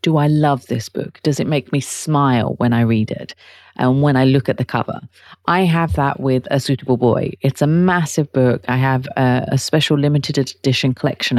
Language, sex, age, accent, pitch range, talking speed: English, female, 30-49, British, 120-160 Hz, 210 wpm